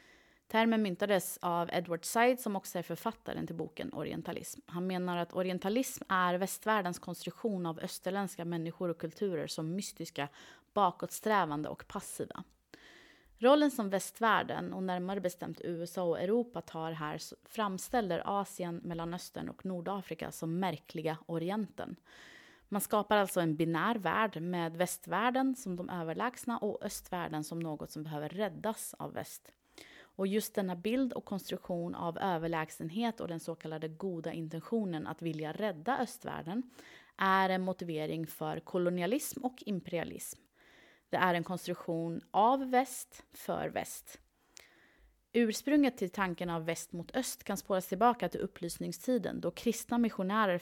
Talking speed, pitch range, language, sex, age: 140 wpm, 170-215 Hz, Swedish, female, 30-49